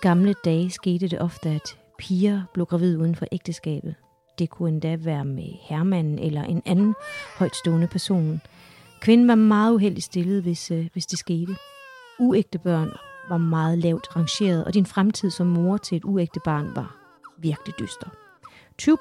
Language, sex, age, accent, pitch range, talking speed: Danish, female, 30-49, native, 165-205 Hz, 160 wpm